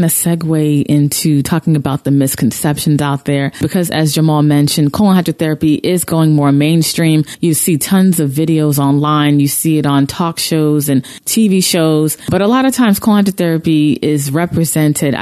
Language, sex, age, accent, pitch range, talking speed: English, female, 20-39, American, 145-175 Hz, 170 wpm